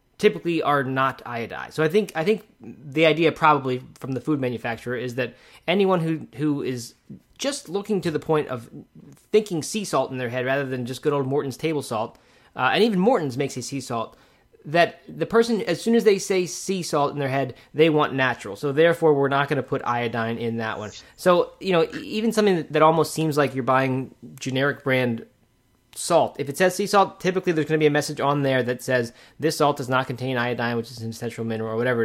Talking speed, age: 225 wpm, 20-39